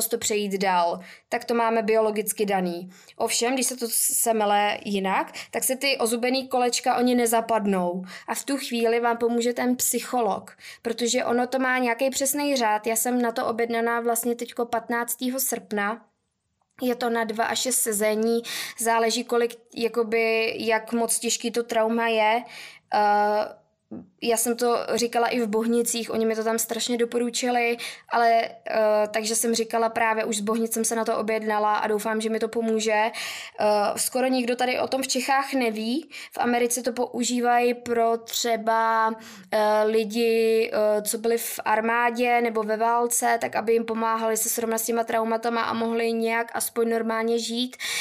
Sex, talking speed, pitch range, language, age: female, 165 wpm, 225-240 Hz, Czech, 20-39